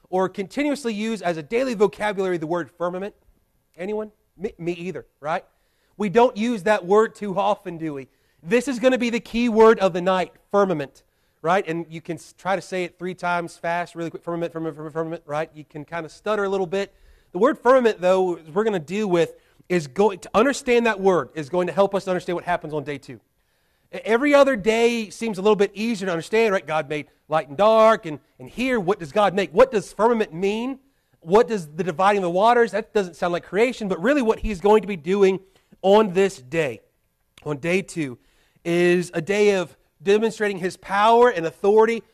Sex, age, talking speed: male, 30-49, 215 wpm